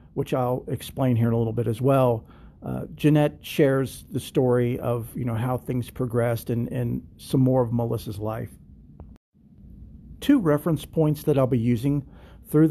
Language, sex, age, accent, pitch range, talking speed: English, male, 50-69, American, 115-135 Hz, 170 wpm